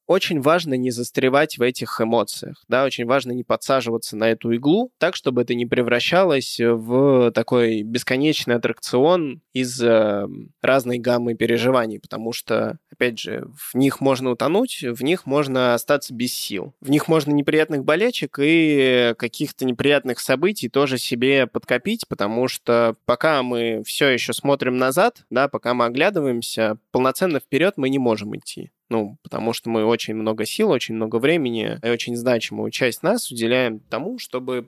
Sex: male